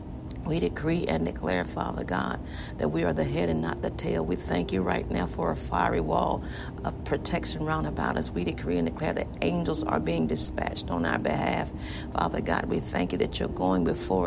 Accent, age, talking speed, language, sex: American, 50-69, 210 wpm, English, female